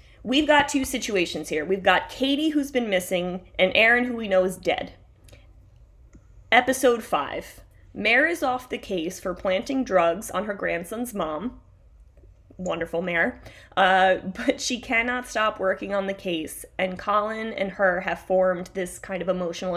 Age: 20-39